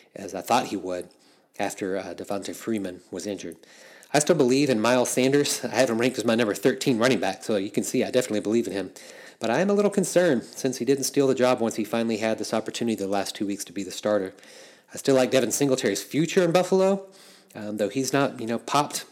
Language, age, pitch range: English, 30-49, 105-135 Hz